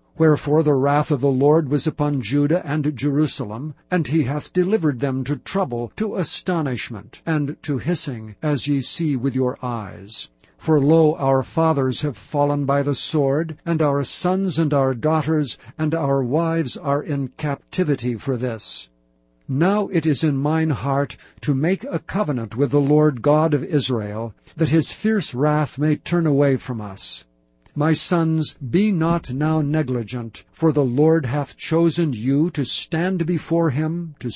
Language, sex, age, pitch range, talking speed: English, male, 60-79, 130-160 Hz, 165 wpm